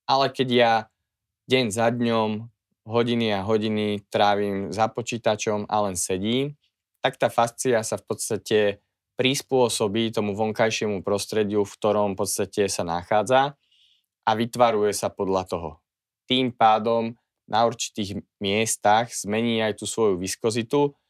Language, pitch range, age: Slovak, 100-115 Hz, 20-39